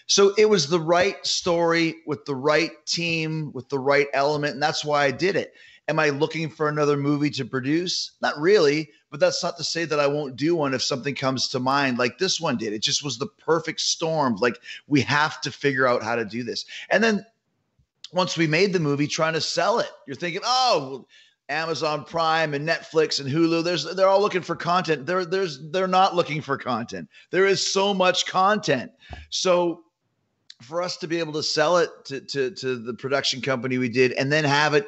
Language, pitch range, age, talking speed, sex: English, 130-170 Hz, 30-49, 215 wpm, male